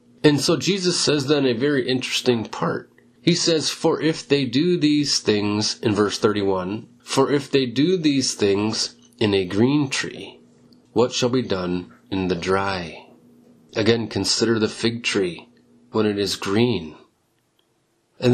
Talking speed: 155 wpm